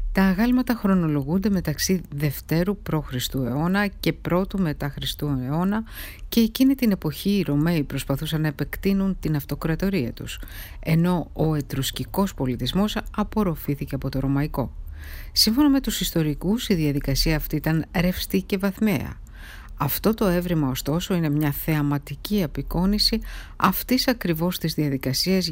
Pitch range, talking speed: 145-195 Hz, 130 wpm